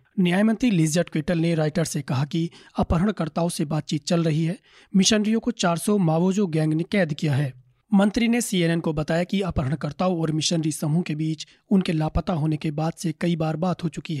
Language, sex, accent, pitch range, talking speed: Hindi, male, native, 160-185 Hz, 195 wpm